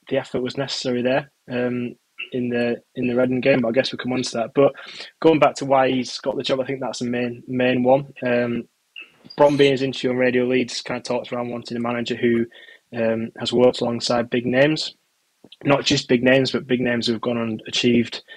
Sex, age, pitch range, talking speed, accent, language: male, 20-39, 115-125 Hz, 225 wpm, British, English